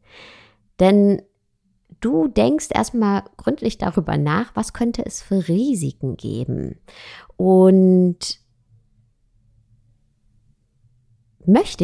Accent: German